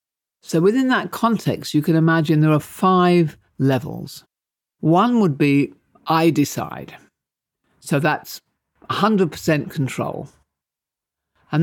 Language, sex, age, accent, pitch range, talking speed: English, male, 50-69, British, 140-190 Hz, 110 wpm